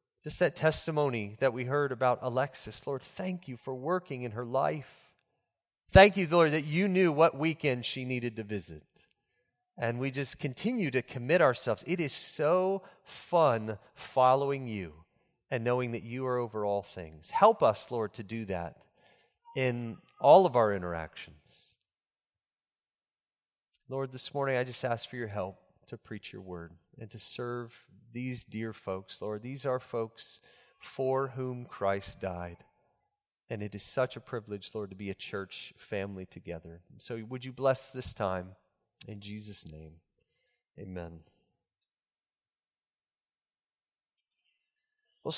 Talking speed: 145 wpm